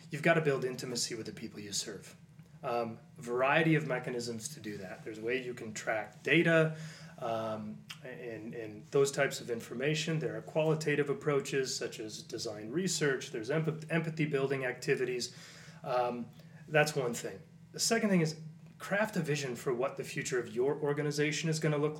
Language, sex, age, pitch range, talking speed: English, male, 30-49, 125-160 Hz, 175 wpm